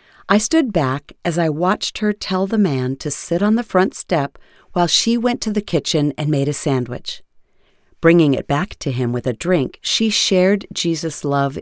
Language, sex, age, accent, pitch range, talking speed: English, female, 50-69, American, 140-190 Hz, 195 wpm